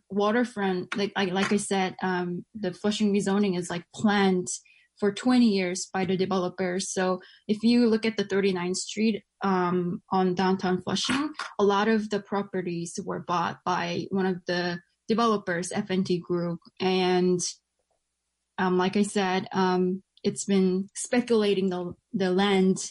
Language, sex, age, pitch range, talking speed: English, female, 20-39, 180-205 Hz, 150 wpm